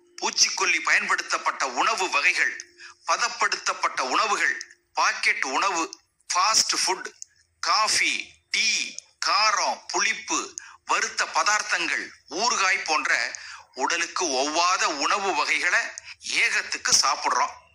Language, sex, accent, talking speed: Tamil, male, native, 75 wpm